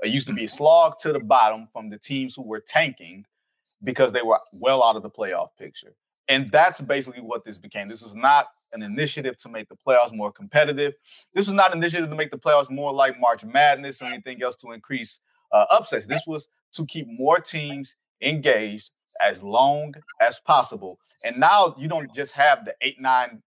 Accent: American